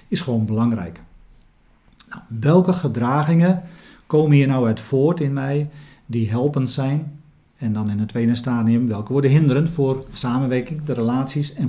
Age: 40-59